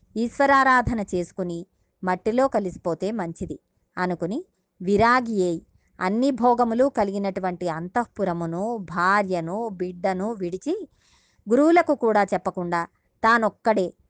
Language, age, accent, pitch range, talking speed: Telugu, 20-39, native, 185-260 Hz, 80 wpm